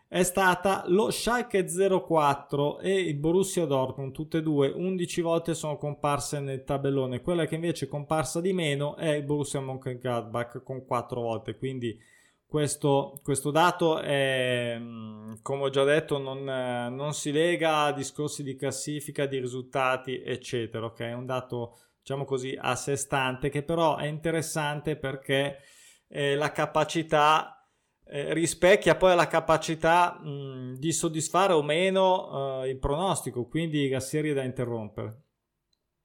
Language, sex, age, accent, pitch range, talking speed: Italian, male, 20-39, native, 130-170 Hz, 145 wpm